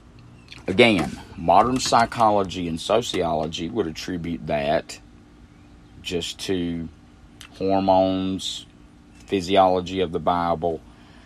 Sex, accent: male, American